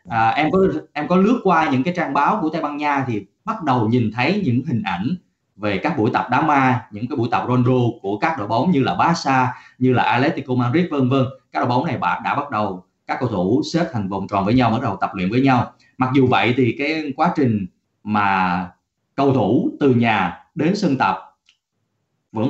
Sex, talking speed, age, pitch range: male, 225 wpm, 20-39, 110-140 Hz